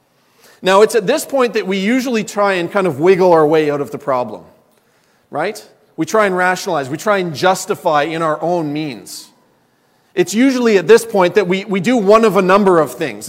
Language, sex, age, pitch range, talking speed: English, male, 40-59, 175-210 Hz, 210 wpm